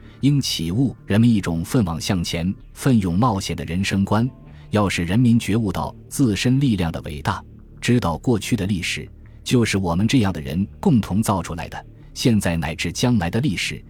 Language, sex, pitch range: Chinese, male, 85-115 Hz